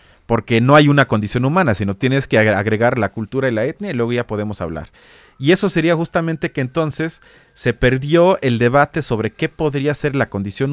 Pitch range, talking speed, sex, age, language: 120-165 Hz, 200 wpm, male, 30-49, Spanish